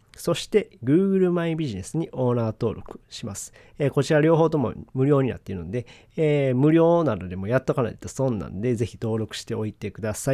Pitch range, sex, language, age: 110-150 Hz, male, Japanese, 40-59